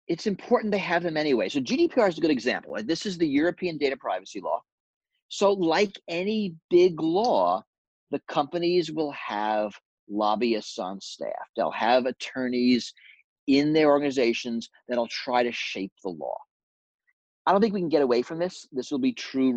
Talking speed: 170 wpm